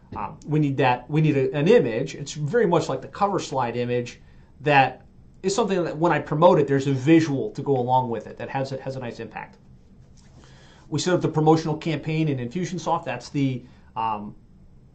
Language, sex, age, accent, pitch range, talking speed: English, male, 30-49, American, 135-165 Hz, 205 wpm